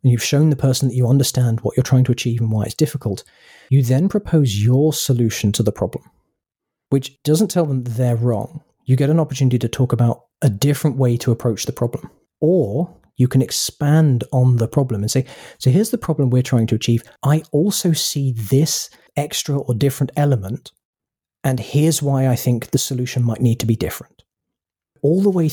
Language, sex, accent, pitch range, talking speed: English, male, British, 120-145 Hz, 200 wpm